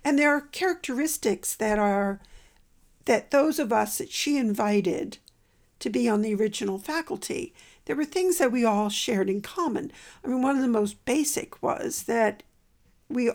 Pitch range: 220-325 Hz